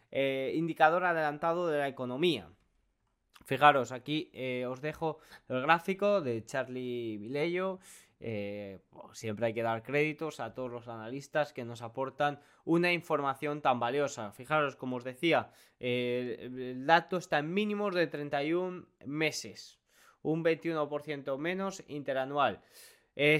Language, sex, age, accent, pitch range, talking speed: Spanish, male, 20-39, Spanish, 135-180 Hz, 130 wpm